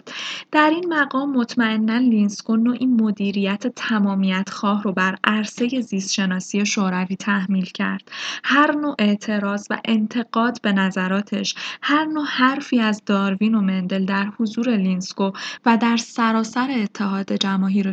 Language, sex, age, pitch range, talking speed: Persian, female, 10-29, 200-245 Hz, 130 wpm